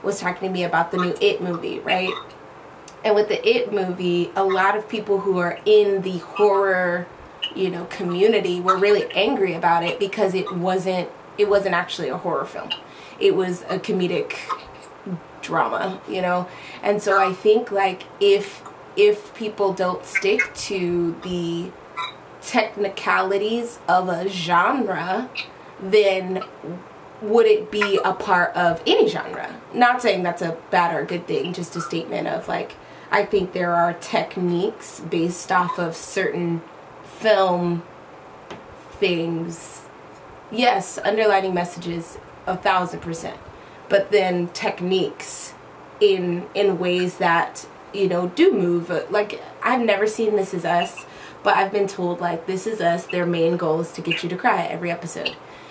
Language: English